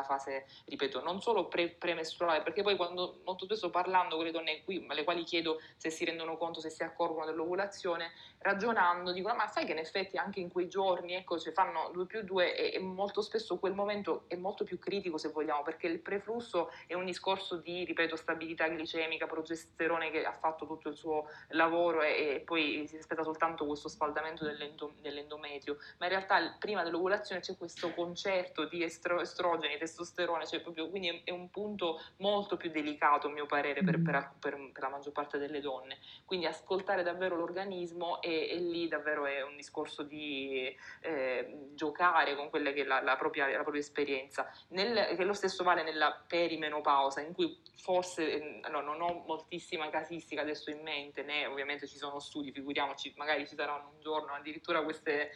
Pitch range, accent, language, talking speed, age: 150-175 Hz, native, Italian, 190 wpm, 20-39